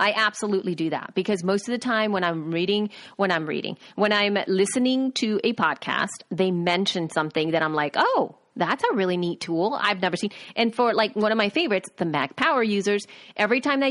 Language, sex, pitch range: English, female, 185-245 Hz